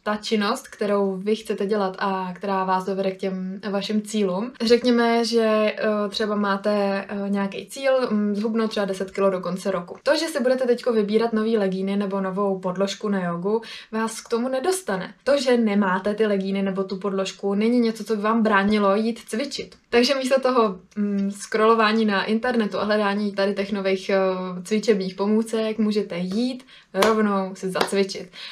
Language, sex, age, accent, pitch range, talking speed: Czech, female, 20-39, native, 195-230 Hz, 165 wpm